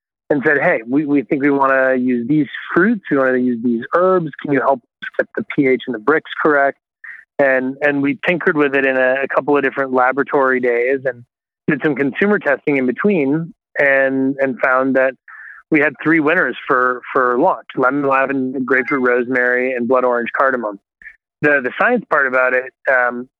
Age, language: 30-49, English